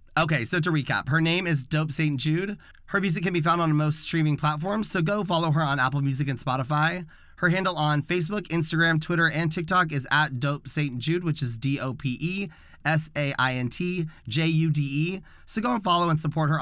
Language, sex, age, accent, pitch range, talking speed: English, male, 30-49, American, 125-165 Hz, 190 wpm